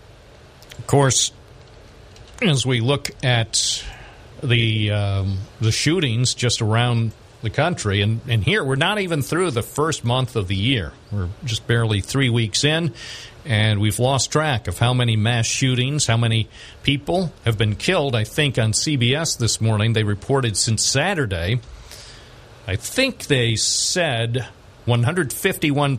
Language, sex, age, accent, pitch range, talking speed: English, male, 50-69, American, 105-135 Hz, 145 wpm